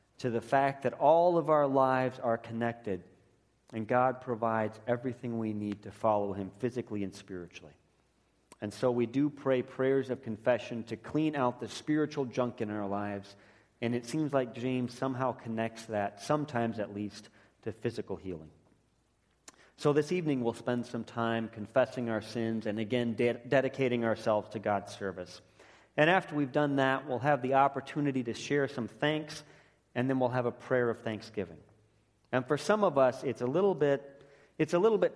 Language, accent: English, American